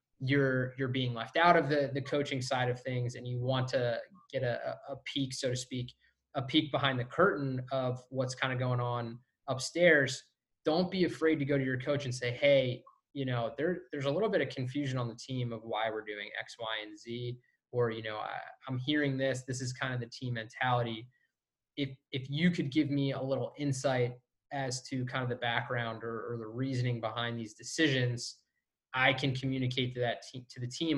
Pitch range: 120-140 Hz